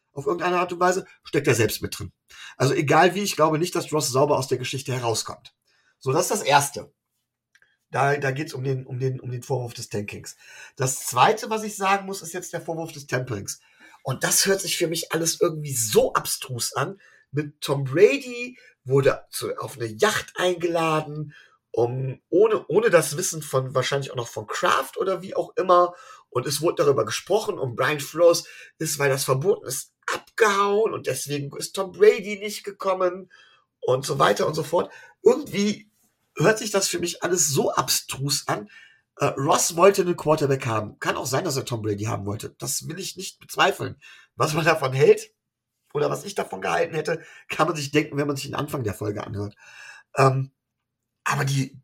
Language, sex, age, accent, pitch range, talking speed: German, male, 40-59, German, 135-190 Hz, 195 wpm